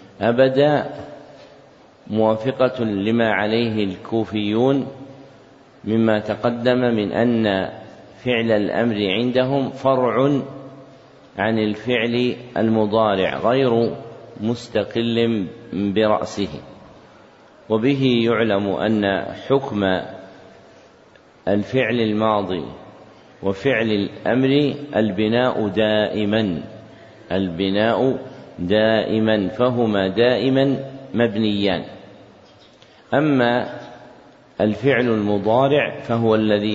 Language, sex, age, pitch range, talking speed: Arabic, male, 50-69, 105-125 Hz, 65 wpm